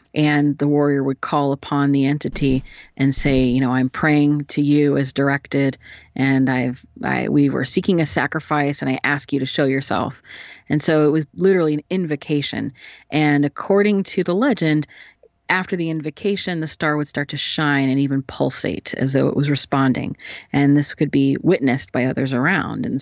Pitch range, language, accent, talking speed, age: 140-165 Hz, English, American, 185 wpm, 30-49